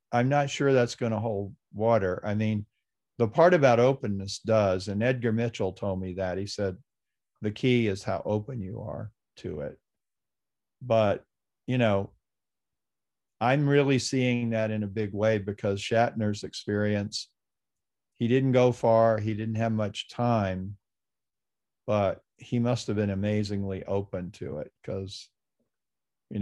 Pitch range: 100-120 Hz